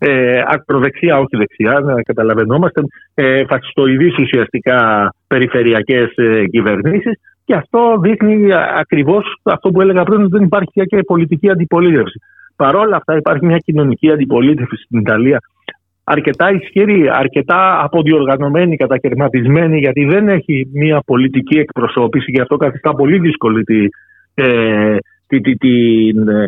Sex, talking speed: male, 110 wpm